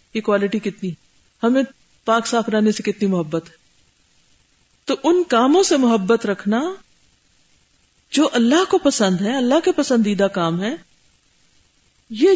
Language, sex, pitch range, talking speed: Urdu, female, 190-295 Hz, 125 wpm